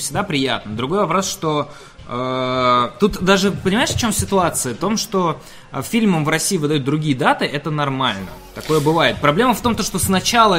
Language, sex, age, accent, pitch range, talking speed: Russian, male, 20-39, native, 145-205 Hz, 175 wpm